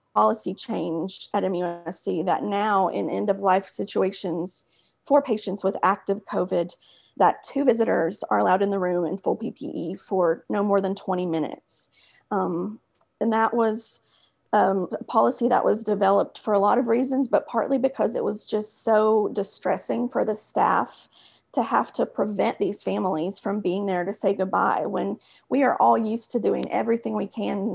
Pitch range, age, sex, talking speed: 190-225 Hz, 30-49, female, 170 wpm